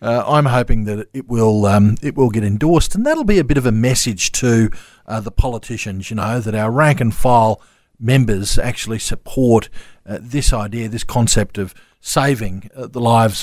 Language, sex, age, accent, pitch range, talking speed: English, male, 40-59, Australian, 110-135 Hz, 185 wpm